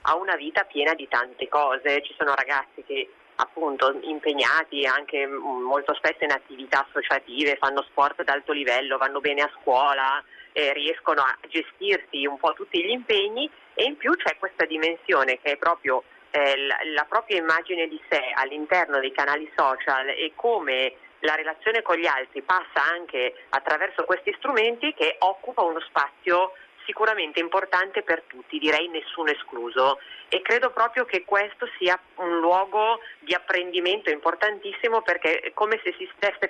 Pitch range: 150-220 Hz